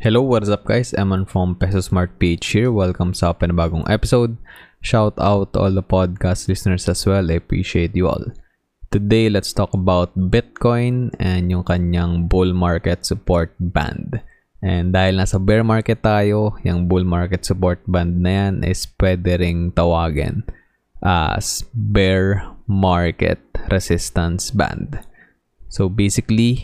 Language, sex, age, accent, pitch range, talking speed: English, male, 20-39, Filipino, 90-105 Hz, 135 wpm